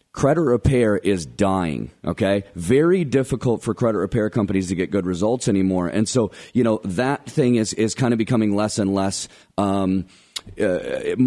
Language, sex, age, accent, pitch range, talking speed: English, male, 30-49, American, 95-120 Hz, 170 wpm